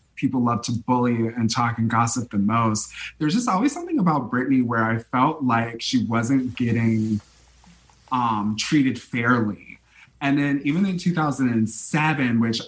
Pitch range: 115-135 Hz